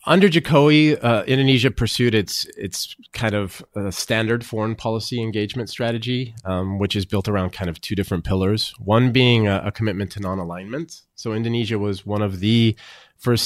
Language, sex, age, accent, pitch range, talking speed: English, male, 30-49, American, 90-115 Hz, 175 wpm